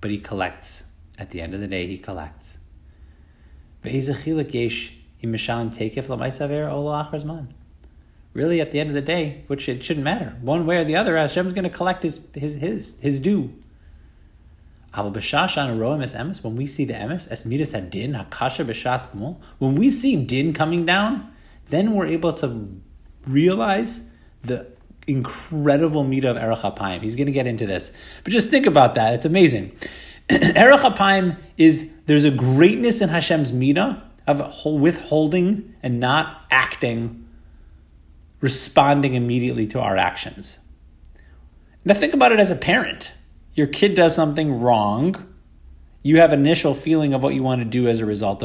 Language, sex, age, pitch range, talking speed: English, male, 30-49, 95-155 Hz, 140 wpm